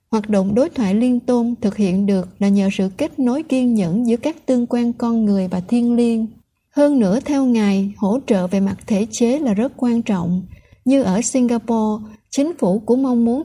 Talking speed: 210 wpm